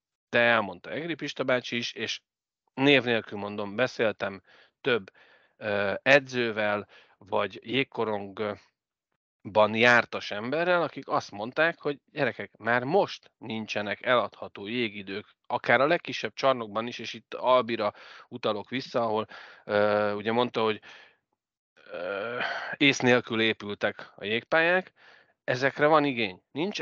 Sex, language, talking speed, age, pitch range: male, Hungarian, 110 wpm, 30-49, 105-140 Hz